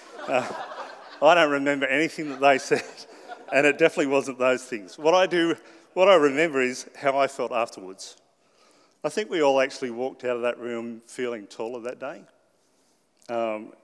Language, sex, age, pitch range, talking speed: English, male, 40-59, 120-155 Hz, 175 wpm